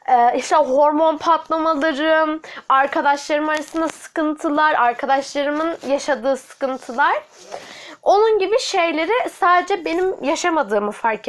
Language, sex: Turkish, female